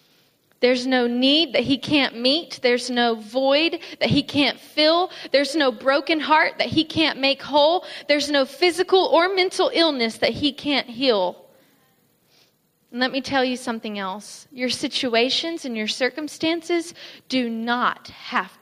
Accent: American